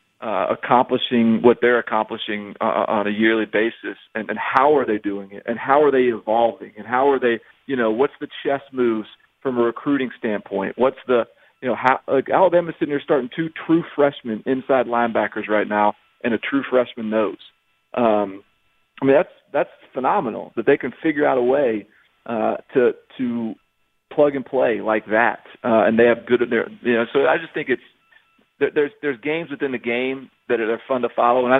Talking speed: 200 wpm